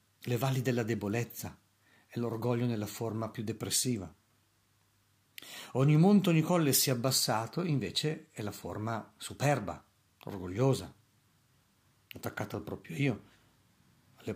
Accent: native